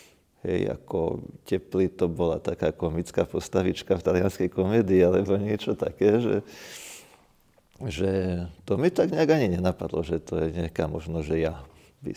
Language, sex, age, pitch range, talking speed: Slovak, male, 40-59, 85-95 Hz, 150 wpm